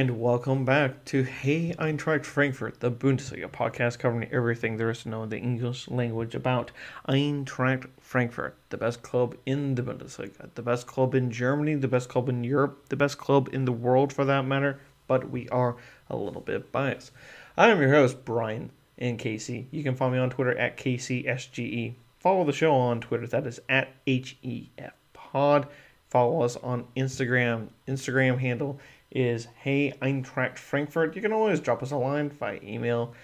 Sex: male